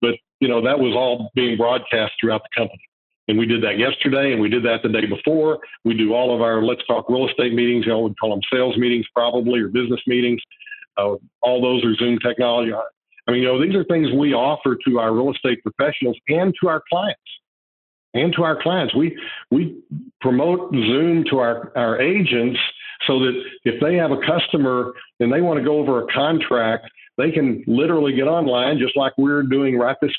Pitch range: 120-150 Hz